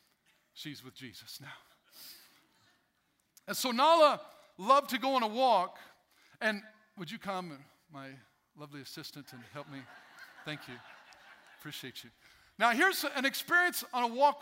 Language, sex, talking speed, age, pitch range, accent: English, male, 140 wpm, 50-69, 185-290 Hz, American